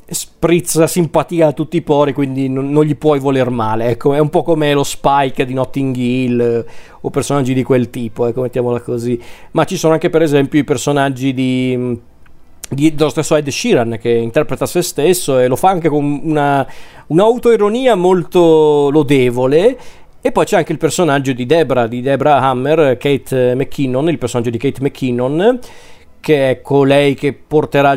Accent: native